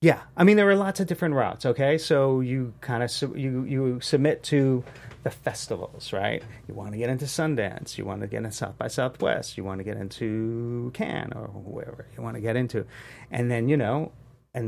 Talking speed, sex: 220 wpm, male